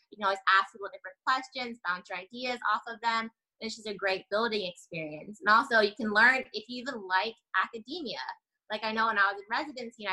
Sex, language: female, English